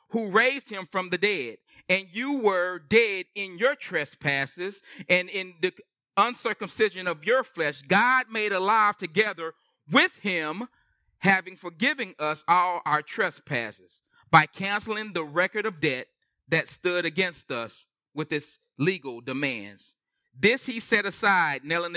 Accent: American